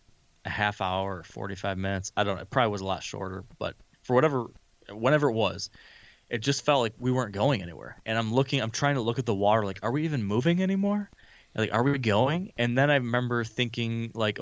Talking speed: 230 wpm